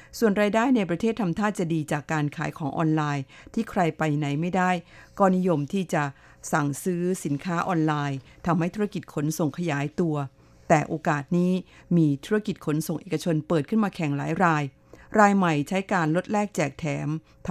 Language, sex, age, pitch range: Thai, female, 50-69, 150-180 Hz